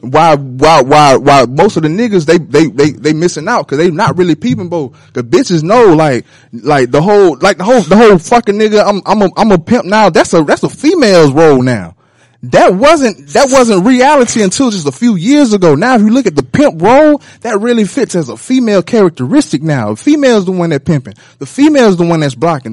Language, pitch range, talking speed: English, 140-215 Hz, 230 wpm